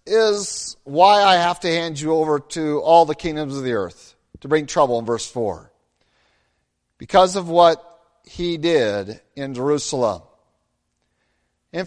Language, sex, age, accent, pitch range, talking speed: English, male, 50-69, American, 145-190 Hz, 145 wpm